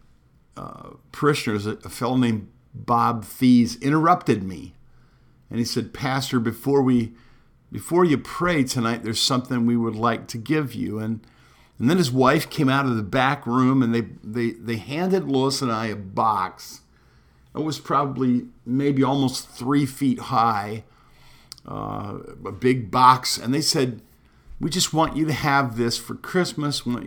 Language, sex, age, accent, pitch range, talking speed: English, male, 50-69, American, 115-135 Hz, 165 wpm